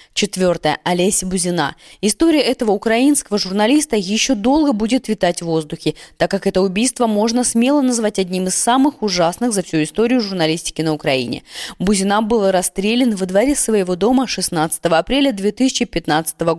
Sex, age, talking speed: female, 20-39, 145 wpm